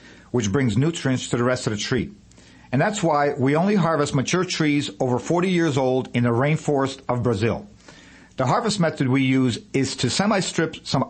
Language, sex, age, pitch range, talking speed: English, male, 50-69, 130-160 Hz, 190 wpm